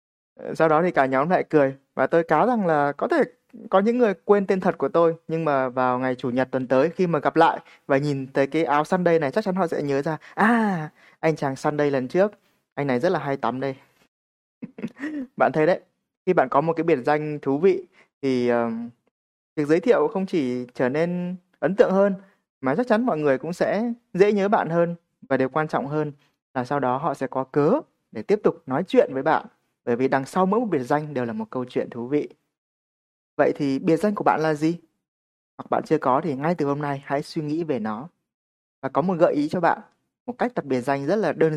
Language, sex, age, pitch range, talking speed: Vietnamese, male, 20-39, 135-180 Hz, 240 wpm